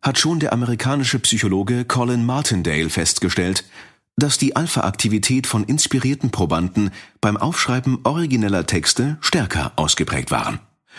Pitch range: 90-125 Hz